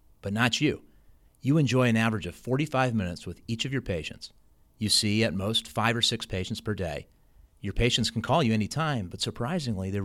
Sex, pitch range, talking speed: male, 95-120 Hz, 205 wpm